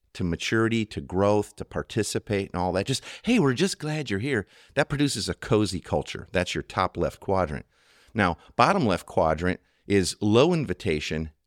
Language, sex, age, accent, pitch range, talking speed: English, male, 50-69, American, 90-125 Hz, 175 wpm